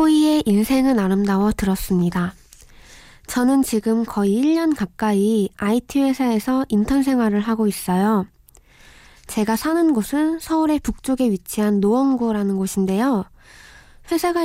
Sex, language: female, Korean